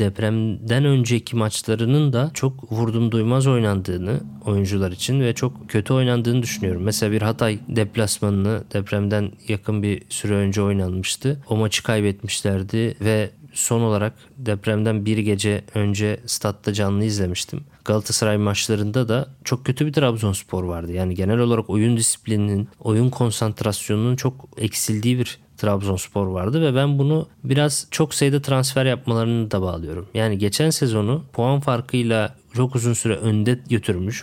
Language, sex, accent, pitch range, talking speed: Turkish, male, native, 110-140 Hz, 135 wpm